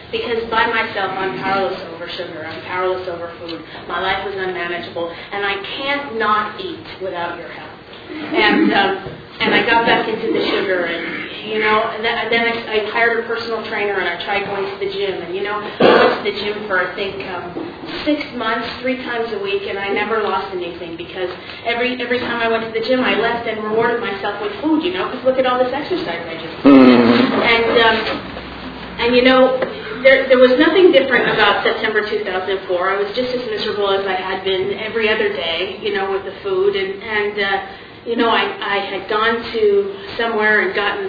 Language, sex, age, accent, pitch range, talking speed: English, female, 30-49, American, 190-235 Hz, 205 wpm